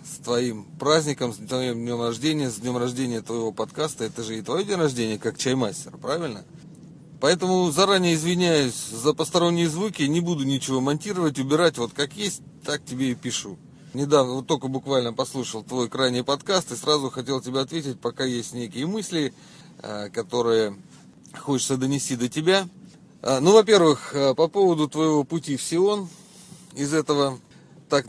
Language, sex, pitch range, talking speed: Russian, male, 125-165 Hz, 155 wpm